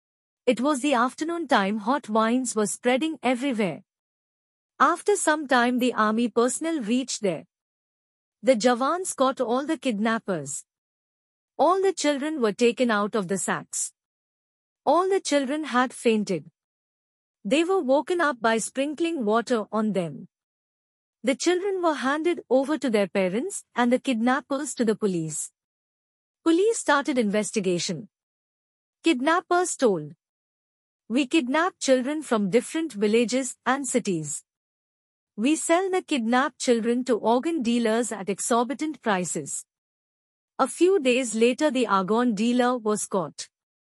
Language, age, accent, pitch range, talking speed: Hindi, 50-69, native, 215-295 Hz, 130 wpm